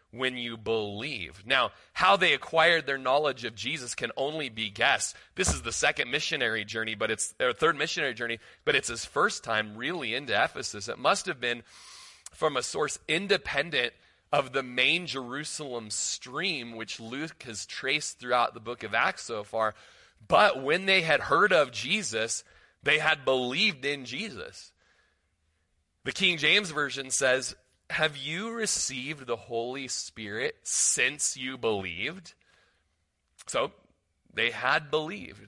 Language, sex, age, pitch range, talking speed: English, male, 30-49, 110-155 Hz, 150 wpm